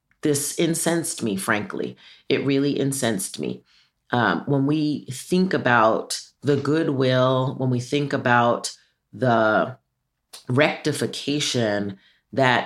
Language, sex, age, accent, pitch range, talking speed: English, female, 30-49, American, 125-150 Hz, 105 wpm